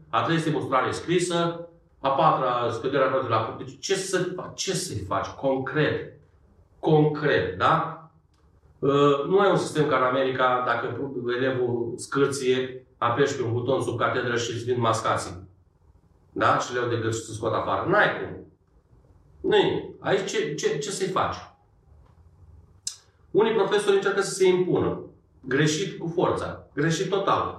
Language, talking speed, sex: Romanian, 150 wpm, male